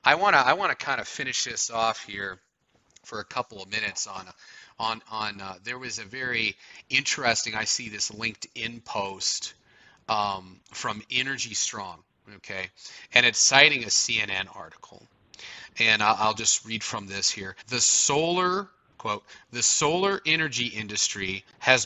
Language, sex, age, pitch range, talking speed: English, male, 30-49, 105-135 Hz, 155 wpm